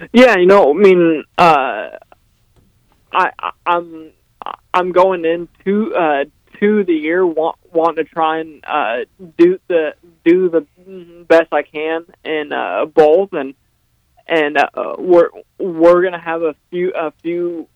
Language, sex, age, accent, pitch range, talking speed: English, male, 20-39, American, 150-175 Hz, 145 wpm